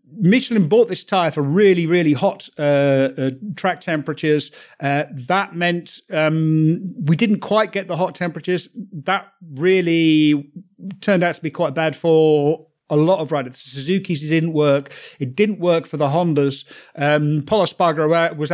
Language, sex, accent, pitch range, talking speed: English, male, British, 150-180 Hz, 160 wpm